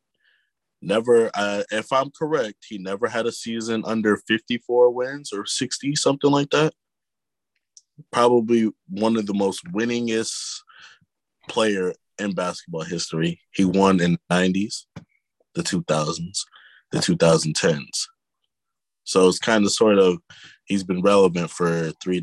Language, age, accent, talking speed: English, 20-39, American, 130 wpm